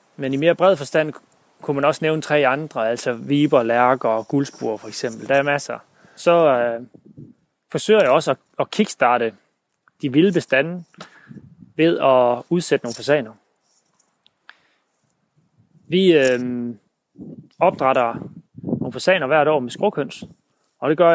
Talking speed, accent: 140 wpm, native